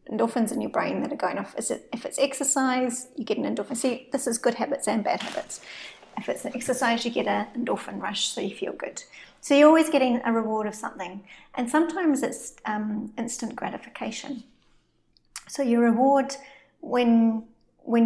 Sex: female